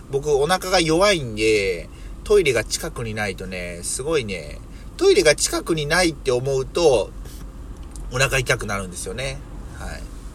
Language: Japanese